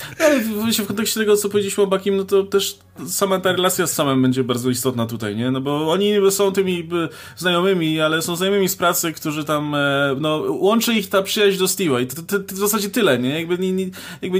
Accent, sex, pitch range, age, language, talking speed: native, male, 130-185 Hz, 20-39, Polish, 205 wpm